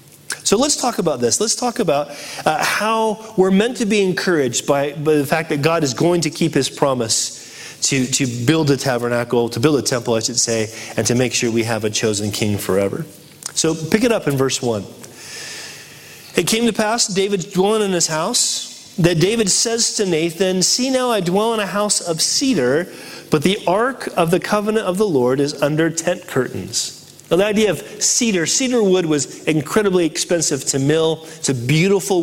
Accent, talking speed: American, 200 wpm